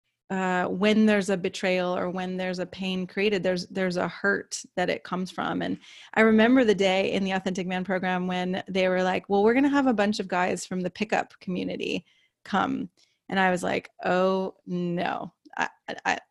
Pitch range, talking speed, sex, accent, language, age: 185-220 Hz, 200 wpm, female, American, English, 20-39